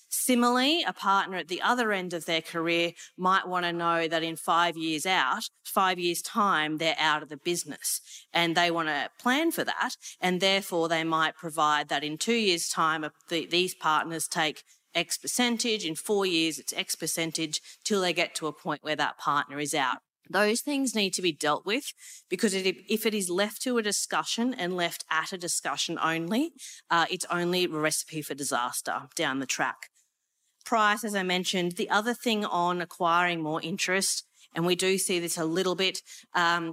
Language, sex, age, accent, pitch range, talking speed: English, female, 30-49, Australian, 165-195 Hz, 190 wpm